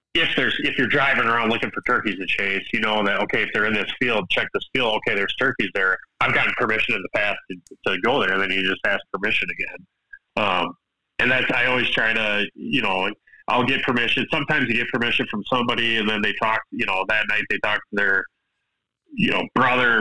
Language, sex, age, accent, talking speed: English, male, 20-39, American, 230 wpm